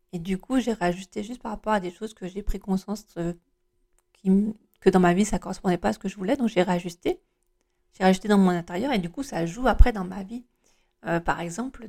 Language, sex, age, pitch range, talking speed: French, female, 40-59, 180-240 Hz, 250 wpm